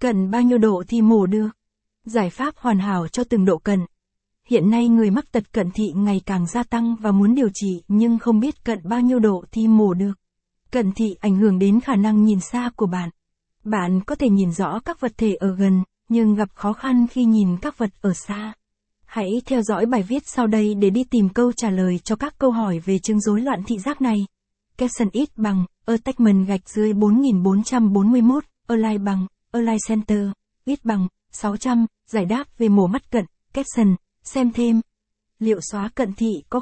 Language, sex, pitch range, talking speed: Vietnamese, female, 200-240 Hz, 200 wpm